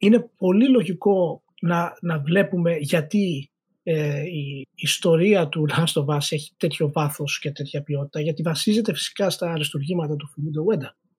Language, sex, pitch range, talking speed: Greek, male, 160-210 Hz, 155 wpm